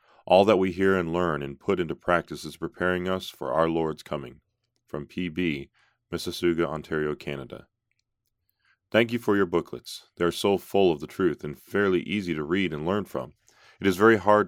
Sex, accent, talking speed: male, American, 190 wpm